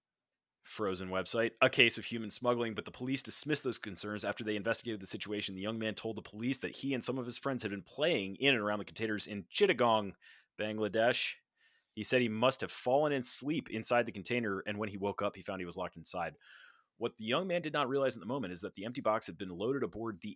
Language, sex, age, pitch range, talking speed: English, male, 30-49, 100-120 Hz, 245 wpm